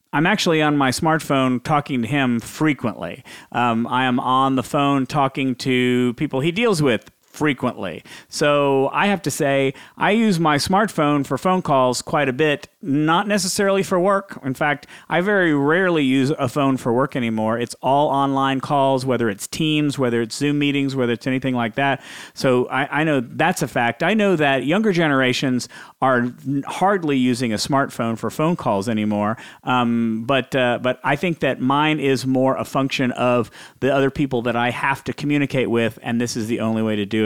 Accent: American